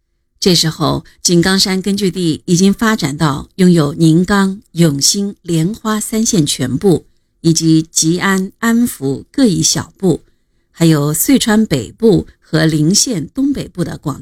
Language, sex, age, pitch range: Chinese, female, 50-69, 150-200 Hz